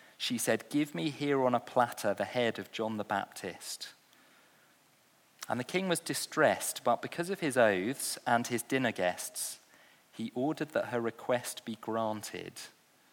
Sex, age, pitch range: male, 40-59, 110-140 Hz